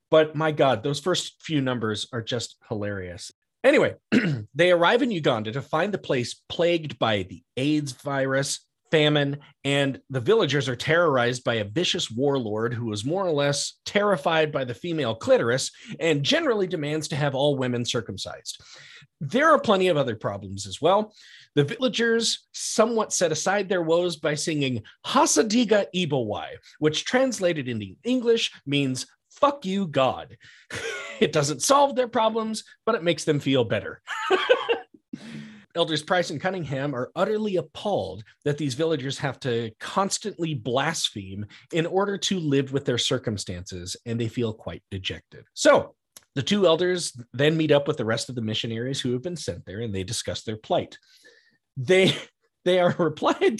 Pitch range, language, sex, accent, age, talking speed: 125-190 Hz, English, male, American, 30-49, 160 wpm